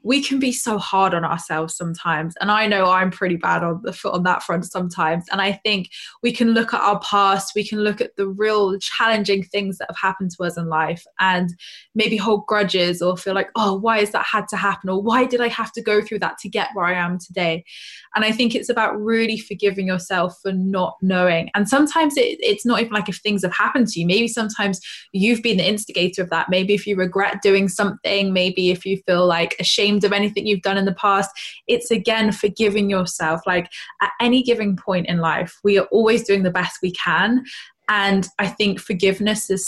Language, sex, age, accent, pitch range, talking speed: English, female, 20-39, British, 180-210 Hz, 225 wpm